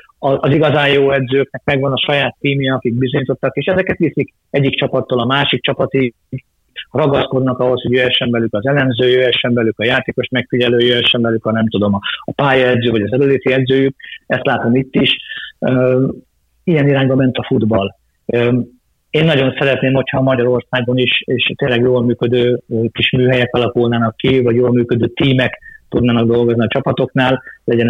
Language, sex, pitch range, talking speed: Hungarian, male, 115-130 Hz, 155 wpm